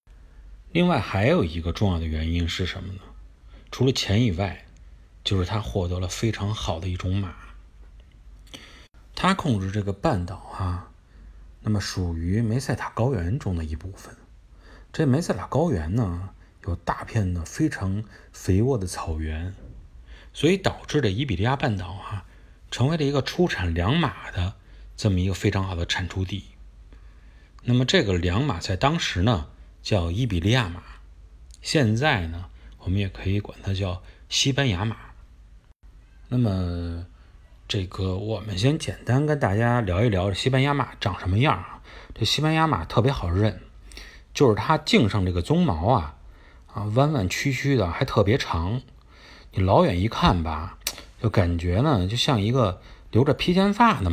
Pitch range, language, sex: 85-115 Hz, Chinese, male